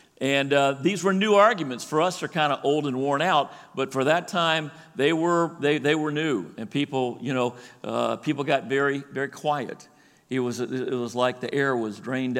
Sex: male